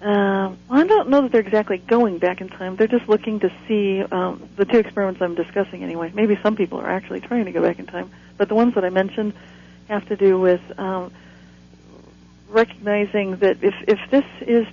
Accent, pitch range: American, 170-205 Hz